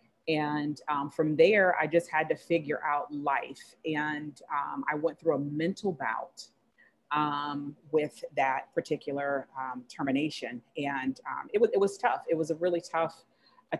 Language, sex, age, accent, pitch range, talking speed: English, female, 30-49, American, 145-170 Hz, 165 wpm